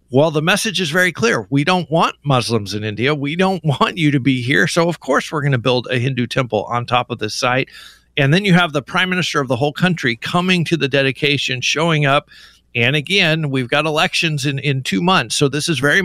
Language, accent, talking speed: English, American, 240 wpm